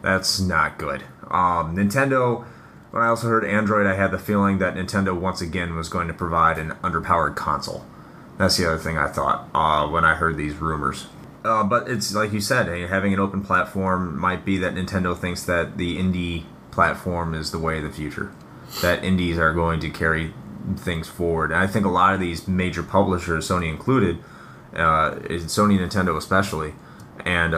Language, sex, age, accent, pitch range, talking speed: English, male, 30-49, American, 80-95 Hz, 185 wpm